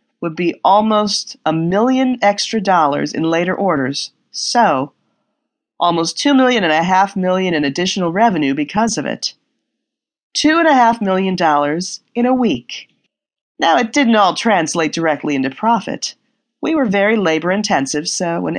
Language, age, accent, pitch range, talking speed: English, 40-59, American, 165-235 Hz, 150 wpm